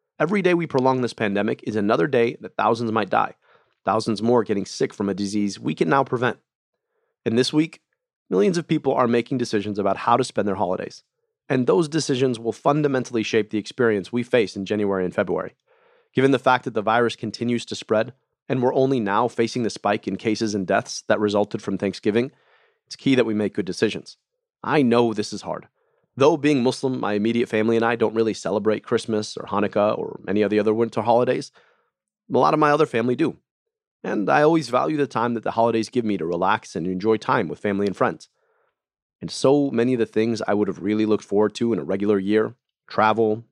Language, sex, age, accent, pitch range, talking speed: English, male, 30-49, American, 105-130 Hz, 215 wpm